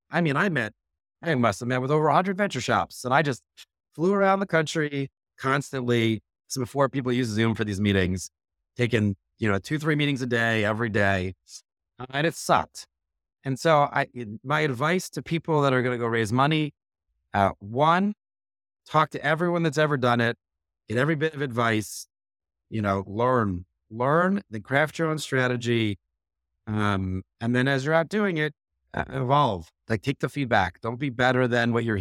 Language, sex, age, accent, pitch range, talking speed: English, male, 30-49, American, 95-140 Hz, 180 wpm